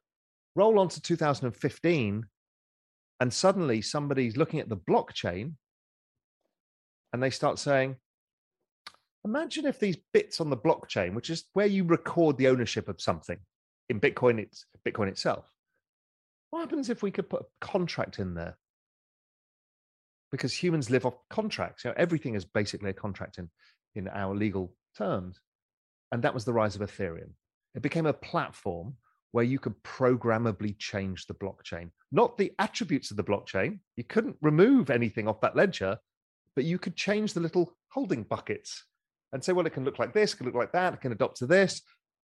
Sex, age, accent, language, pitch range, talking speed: male, 30-49, British, English, 105-165 Hz, 170 wpm